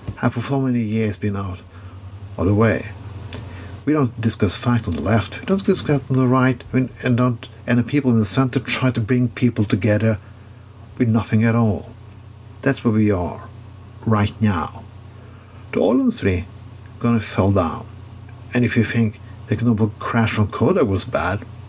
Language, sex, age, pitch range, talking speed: English, male, 50-69, 105-115 Hz, 185 wpm